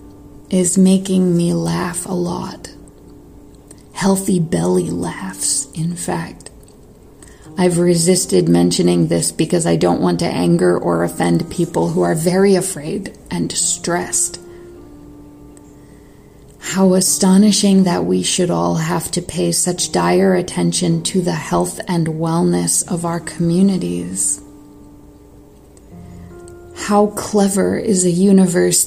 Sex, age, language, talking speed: female, 30-49, English, 115 wpm